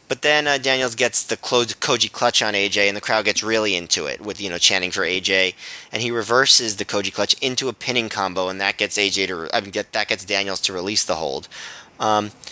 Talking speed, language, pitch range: 245 wpm, English, 100-120 Hz